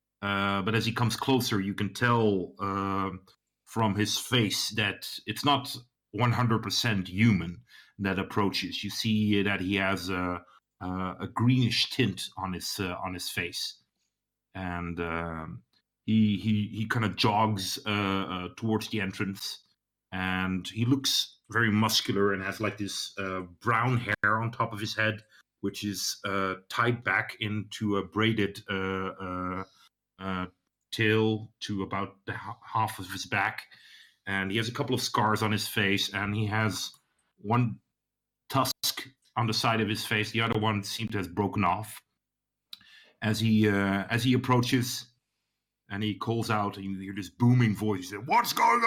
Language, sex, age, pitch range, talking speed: English, male, 40-59, 95-115 Hz, 165 wpm